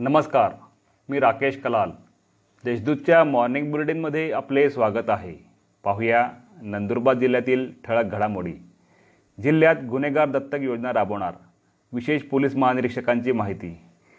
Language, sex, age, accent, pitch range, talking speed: Marathi, male, 30-49, native, 120-150 Hz, 100 wpm